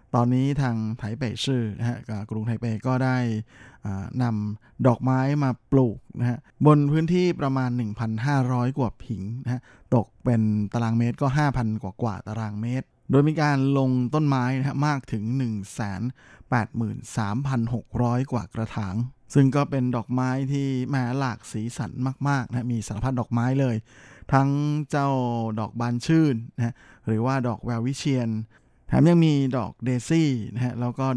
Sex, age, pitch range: male, 20-39, 110-130 Hz